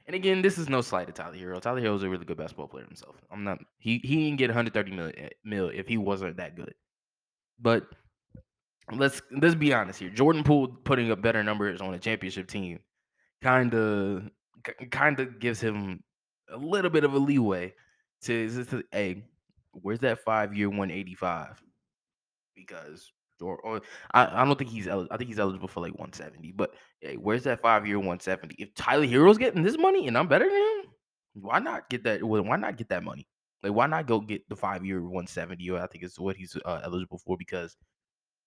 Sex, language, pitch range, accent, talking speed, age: male, English, 95-130 Hz, American, 195 wpm, 20-39